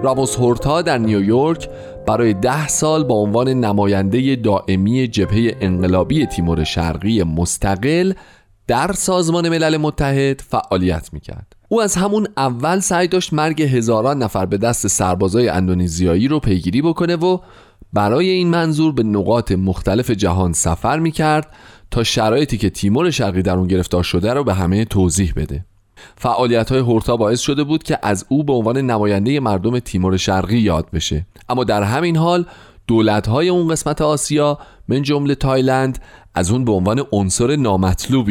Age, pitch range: 30-49, 95-140 Hz